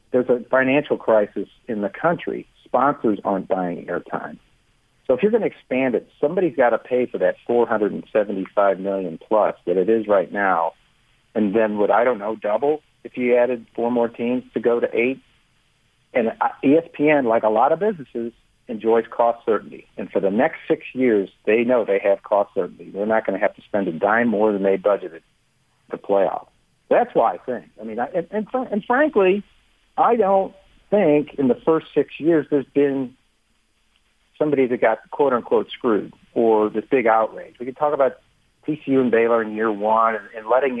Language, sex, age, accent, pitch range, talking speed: English, male, 50-69, American, 110-135 Hz, 190 wpm